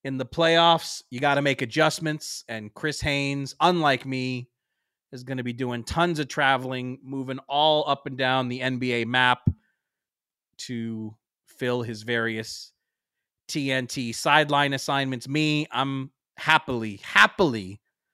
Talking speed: 130 wpm